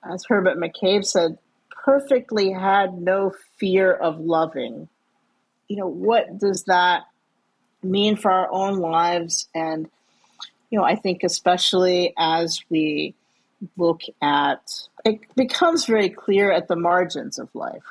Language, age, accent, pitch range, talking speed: English, 50-69, American, 170-205 Hz, 130 wpm